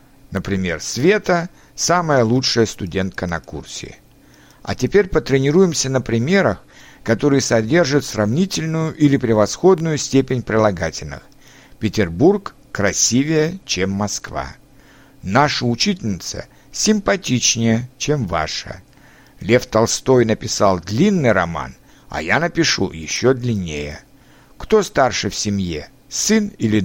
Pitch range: 100-145 Hz